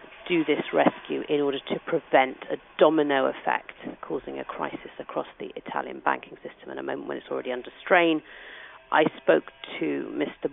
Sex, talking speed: female, 170 wpm